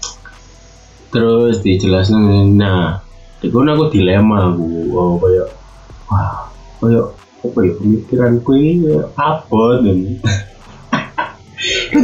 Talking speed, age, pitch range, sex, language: 95 wpm, 20-39, 95-120 Hz, male, Indonesian